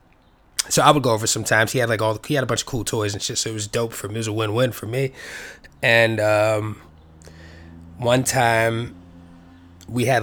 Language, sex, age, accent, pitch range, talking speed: English, male, 20-39, American, 110-135 Hz, 230 wpm